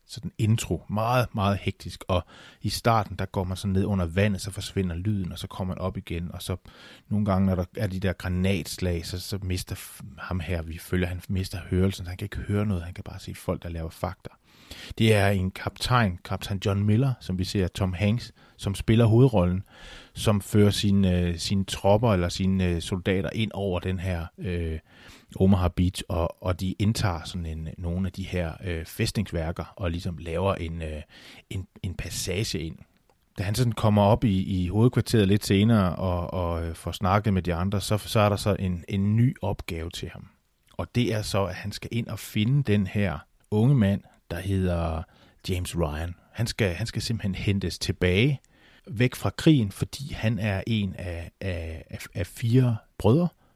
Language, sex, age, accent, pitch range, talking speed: Danish, male, 30-49, native, 90-105 Hz, 190 wpm